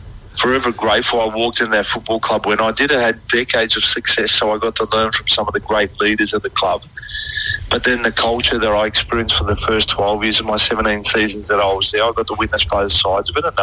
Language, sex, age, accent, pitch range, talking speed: English, male, 30-49, Australian, 100-110 Hz, 260 wpm